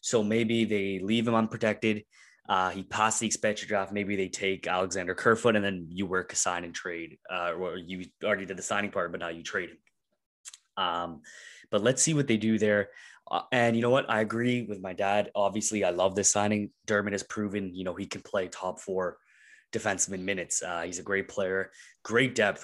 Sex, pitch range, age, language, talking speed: male, 95-110 Hz, 20-39, English, 215 wpm